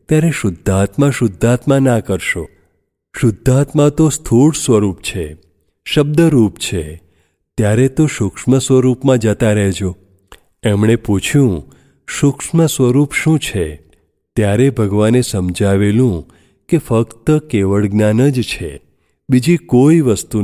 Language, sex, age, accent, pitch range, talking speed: Gujarati, male, 40-59, native, 95-130 Hz, 95 wpm